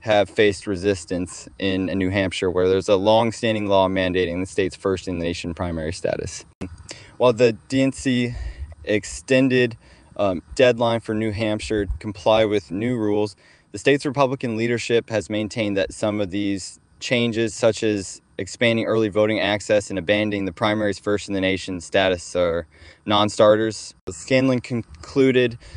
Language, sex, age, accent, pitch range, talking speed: English, male, 20-39, American, 95-115 Hz, 135 wpm